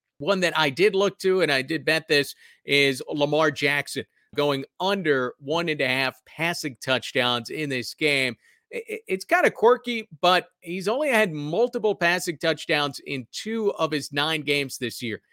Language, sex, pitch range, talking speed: English, male, 125-170 Hz, 170 wpm